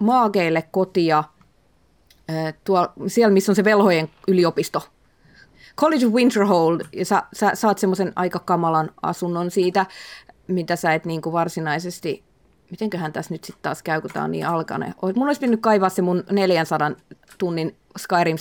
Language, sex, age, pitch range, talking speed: Finnish, female, 20-39, 165-200 Hz, 155 wpm